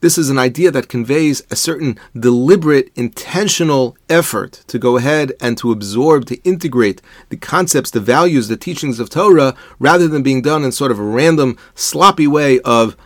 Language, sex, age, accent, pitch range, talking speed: English, male, 40-59, American, 120-165 Hz, 180 wpm